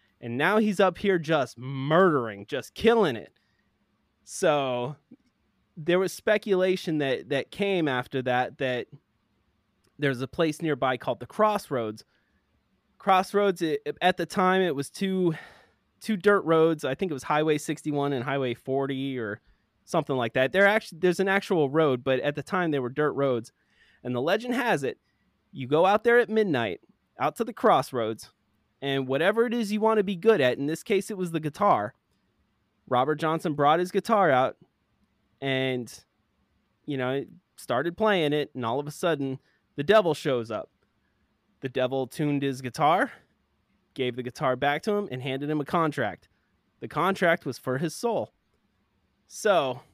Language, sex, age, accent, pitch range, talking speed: English, male, 20-39, American, 130-190 Hz, 170 wpm